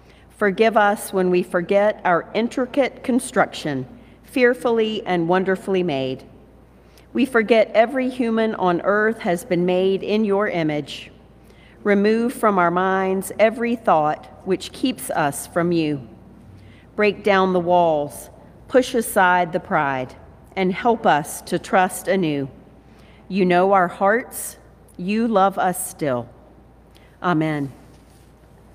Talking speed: 120 wpm